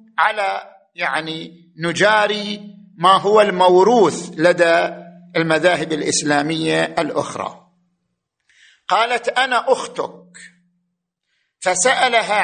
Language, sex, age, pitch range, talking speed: Arabic, male, 50-69, 165-195 Hz, 70 wpm